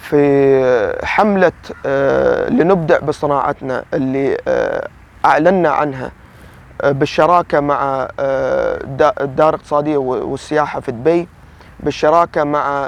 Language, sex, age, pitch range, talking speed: Arabic, male, 20-39, 145-185 Hz, 75 wpm